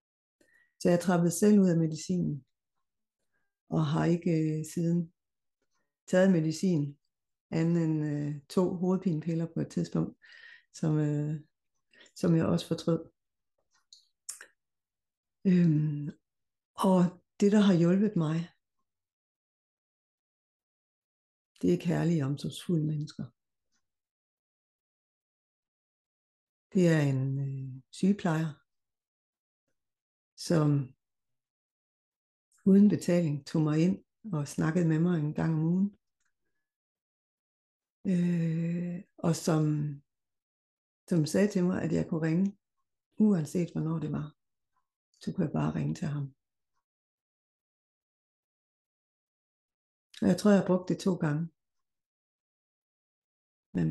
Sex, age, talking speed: female, 60-79, 95 wpm